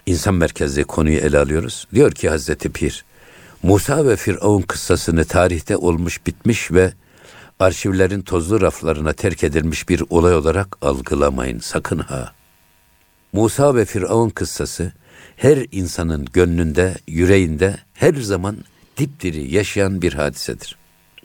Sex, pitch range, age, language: male, 80-100 Hz, 60-79, Turkish